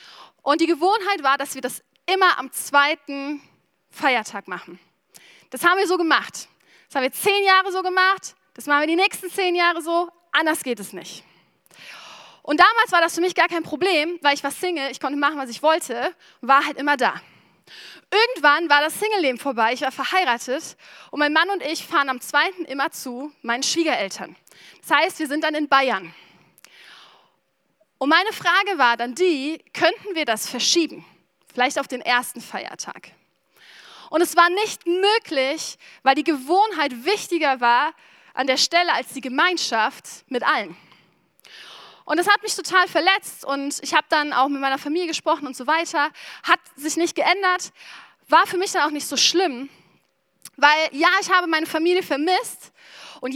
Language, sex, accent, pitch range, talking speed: German, female, German, 270-345 Hz, 175 wpm